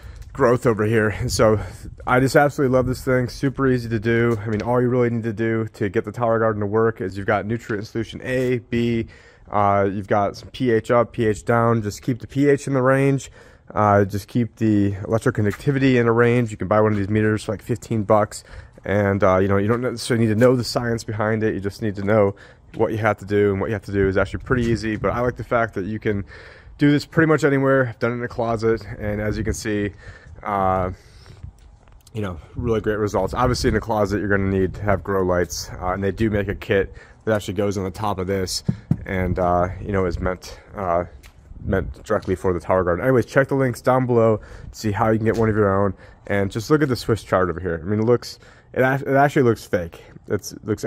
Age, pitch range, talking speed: 30-49, 100-120 Hz, 250 wpm